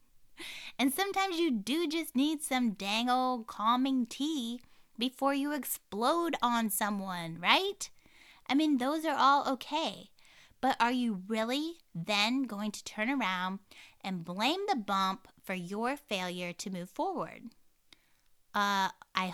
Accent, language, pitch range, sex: American, English, 200-270 Hz, female